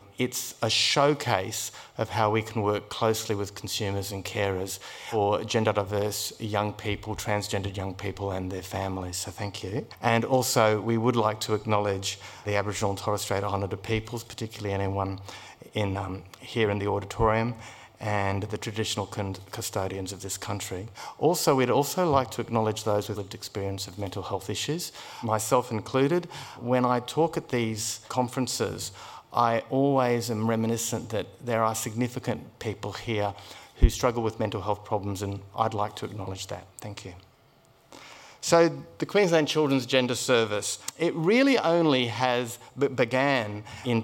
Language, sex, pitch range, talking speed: English, male, 100-120 Hz, 155 wpm